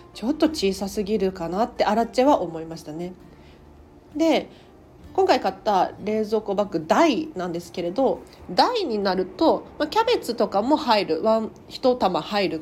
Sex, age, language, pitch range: female, 40-59, Japanese, 185-260 Hz